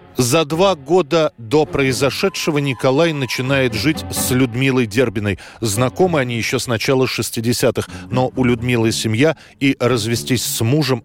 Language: Russian